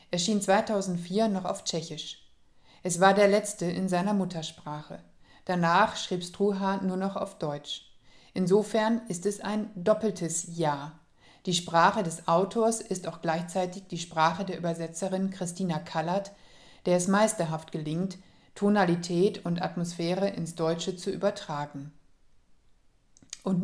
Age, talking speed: 50-69, 130 wpm